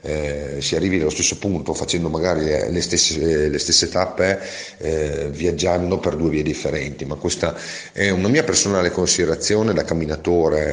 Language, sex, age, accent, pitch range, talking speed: Italian, male, 40-59, native, 80-90 Hz, 150 wpm